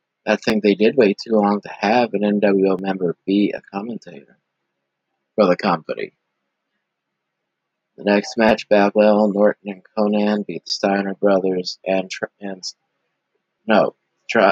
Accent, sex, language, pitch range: American, male, English, 70-105 Hz